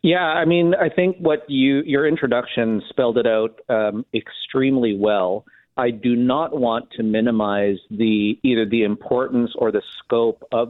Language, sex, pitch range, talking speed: English, male, 110-140 Hz, 165 wpm